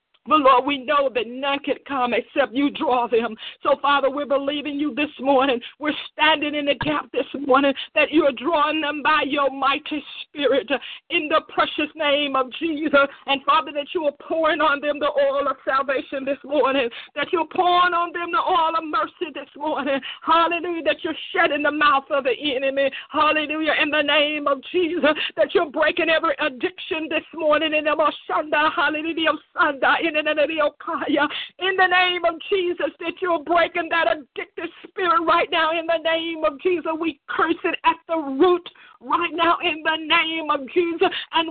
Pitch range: 285-335 Hz